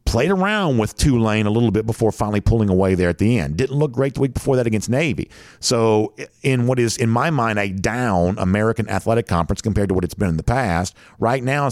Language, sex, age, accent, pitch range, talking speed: English, male, 50-69, American, 95-125 Hz, 235 wpm